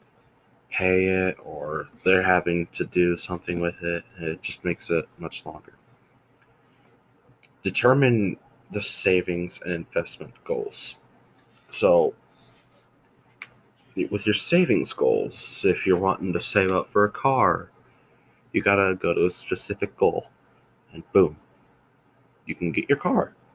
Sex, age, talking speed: male, 20-39, 125 wpm